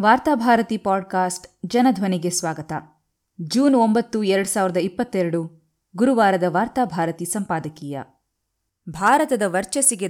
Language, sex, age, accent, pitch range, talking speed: Kannada, female, 20-39, native, 170-220 Hz, 85 wpm